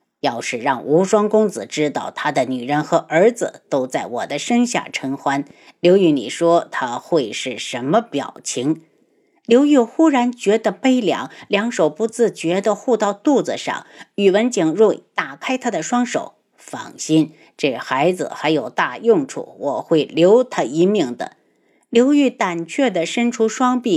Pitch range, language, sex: 190-260 Hz, Chinese, female